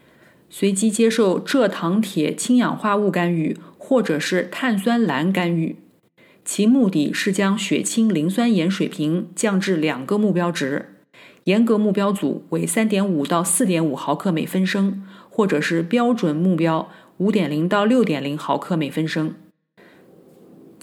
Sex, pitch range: female, 170-215 Hz